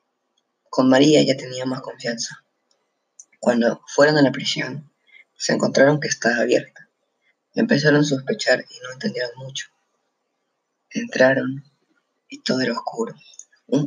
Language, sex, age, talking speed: Spanish, female, 20-39, 125 wpm